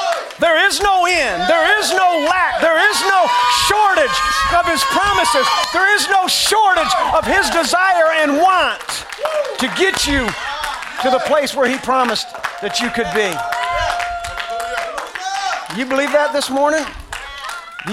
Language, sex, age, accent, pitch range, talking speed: English, male, 40-59, American, 210-345 Hz, 145 wpm